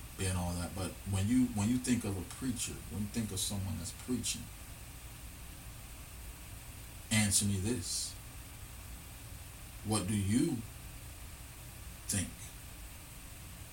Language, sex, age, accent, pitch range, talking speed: English, male, 40-59, American, 90-110 Hz, 115 wpm